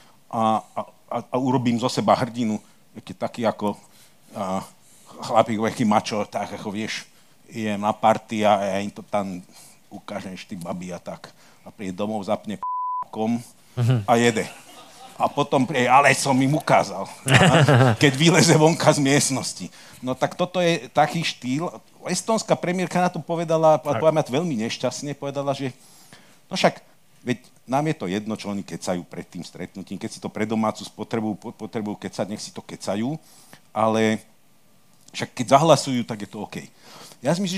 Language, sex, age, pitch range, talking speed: Slovak, male, 50-69, 105-145 Hz, 160 wpm